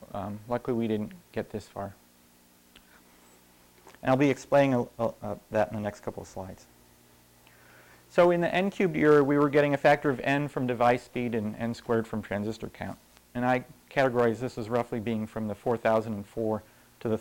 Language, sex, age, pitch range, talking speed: English, male, 40-59, 100-125 Hz, 180 wpm